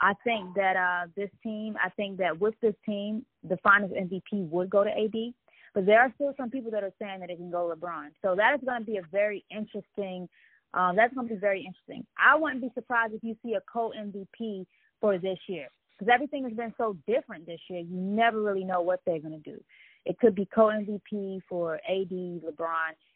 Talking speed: 220 wpm